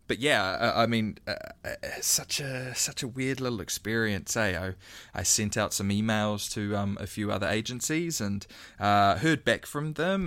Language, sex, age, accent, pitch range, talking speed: English, male, 20-39, Australian, 100-125 Hz, 175 wpm